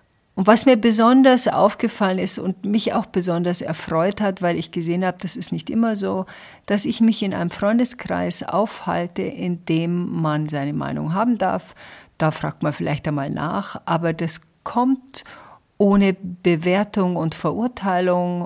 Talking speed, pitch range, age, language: 155 wpm, 165-195 Hz, 50-69, German